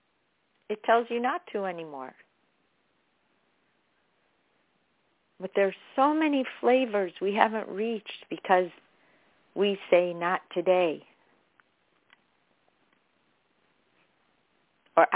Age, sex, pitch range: 50-69, female, 180-220 Hz